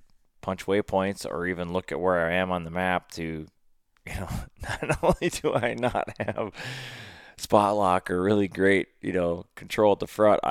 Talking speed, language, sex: 185 wpm, English, male